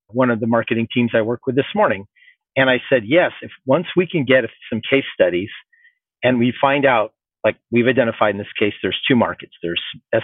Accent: American